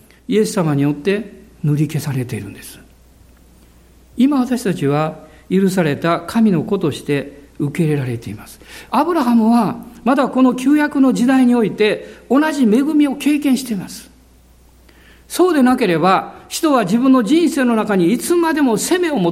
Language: Japanese